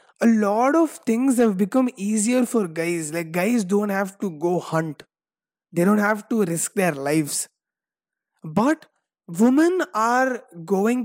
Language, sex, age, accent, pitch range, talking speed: English, male, 20-39, Indian, 165-225 Hz, 145 wpm